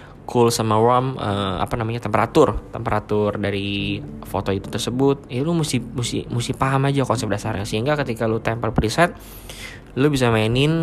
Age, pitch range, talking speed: 20-39, 100-120 Hz, 155 wpm